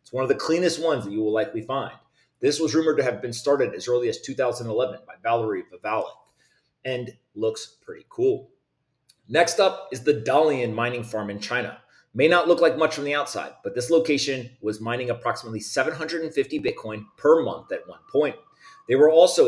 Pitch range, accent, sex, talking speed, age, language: 115-180 Hz, American, male, 190 wpm, 30-49, English